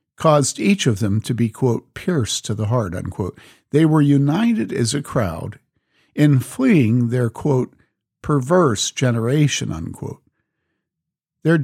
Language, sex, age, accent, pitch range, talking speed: English, male, 50-69, American, 115-155 Hz, 135 wpm